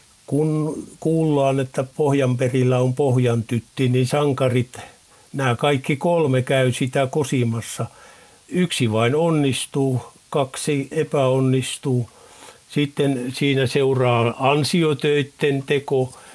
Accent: native